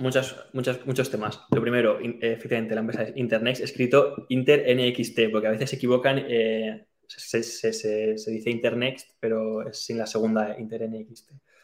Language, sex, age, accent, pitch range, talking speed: Spanish, male, 20-39, Spanish, 110-120 Hz, 170 wpm